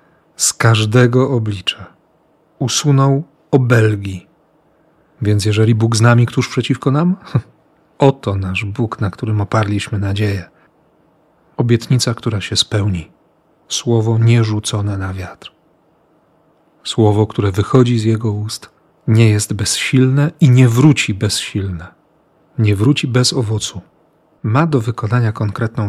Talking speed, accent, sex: 115 wpm, native, male